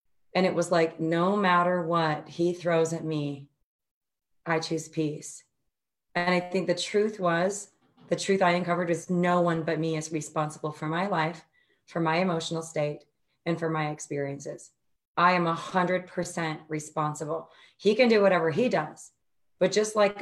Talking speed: 165 wpm